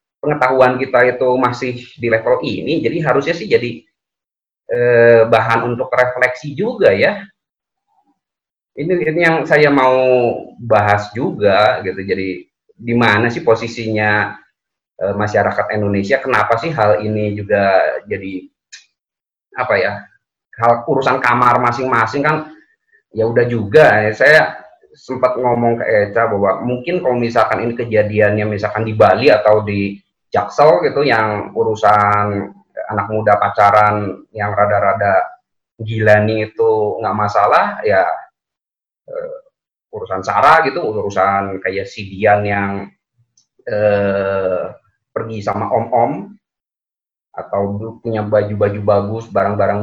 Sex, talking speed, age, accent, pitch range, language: male, 115 wpm, 20-39, native, 105-130 Hz, Indonesian